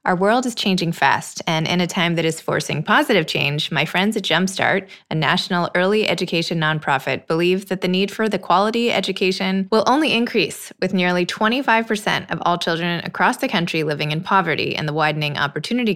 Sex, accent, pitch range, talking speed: female, American, 165-200 Hz, 190 wpm